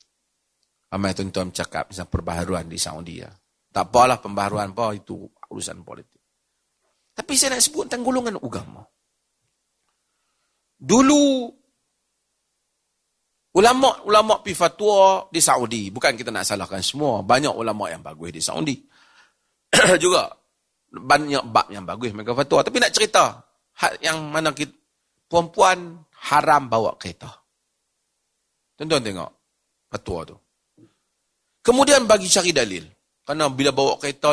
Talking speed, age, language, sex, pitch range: 120 wpm, 40-59, Malay, male, 115-170 Hz